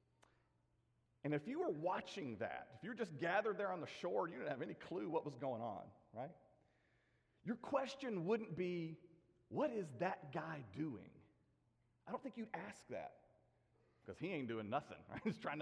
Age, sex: 40-59, male